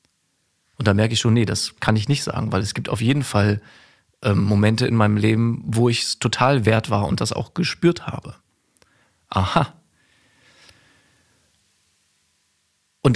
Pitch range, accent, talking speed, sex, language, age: 110-145 Hz, German, 160 wpm, male, German, 40-59